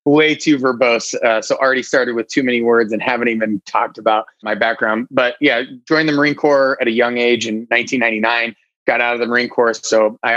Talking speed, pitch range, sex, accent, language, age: 220 wpm, 110-125 Hz, male, American, English, 30-49